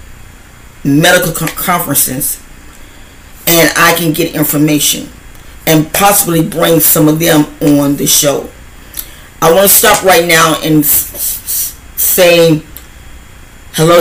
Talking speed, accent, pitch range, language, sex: 105 wpm, American, 135-170 Hz, English, female